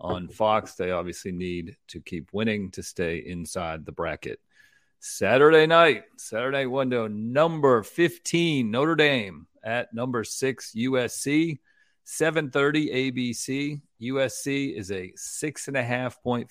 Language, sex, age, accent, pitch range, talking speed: English, male, 40-59, American, 105-135 Hz, 115 wpm